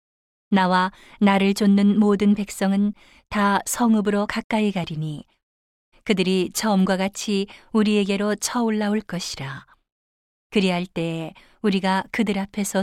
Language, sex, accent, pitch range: Korean, female, native, 180-210 Hz